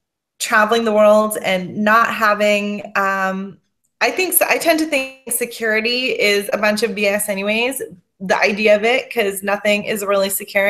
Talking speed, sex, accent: 155 wpm, female, American